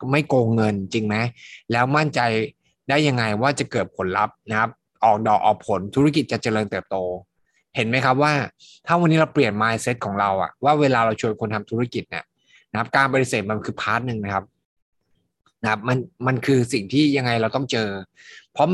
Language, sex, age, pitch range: Thai, male, 20-39, 110-140 Hz